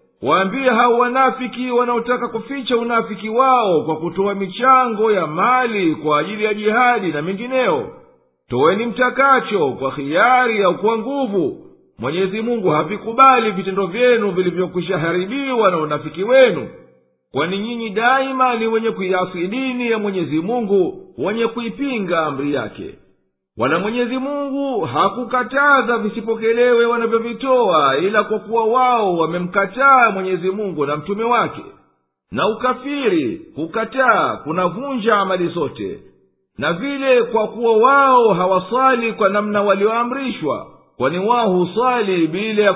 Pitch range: 185-250 Hz